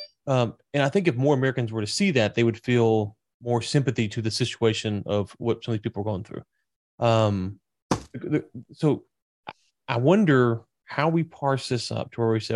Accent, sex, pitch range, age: American, male, 115-145 Hz, 30-49